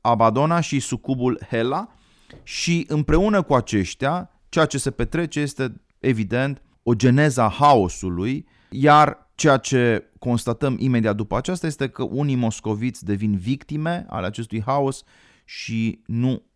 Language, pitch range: Romanian, 100-130 Hz